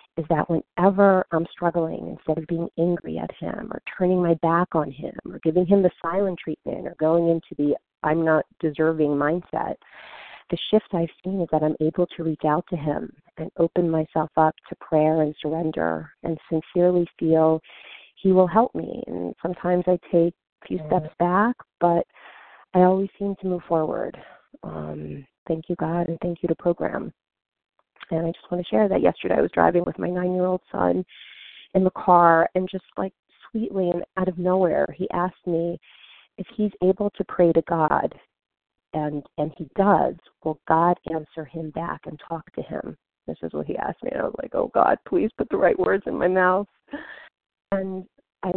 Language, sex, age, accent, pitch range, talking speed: English, female, 40-59, American, 160-185 Hz, 190 wpm